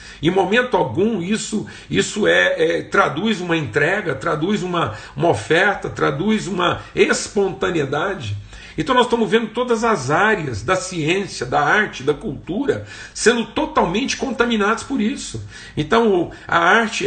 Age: 50-69